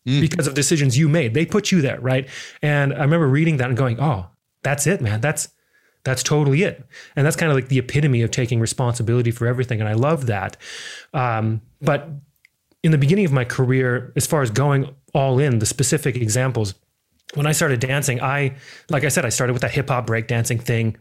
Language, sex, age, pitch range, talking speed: English, male, 30-49, 120-150 Hz, 215 wpm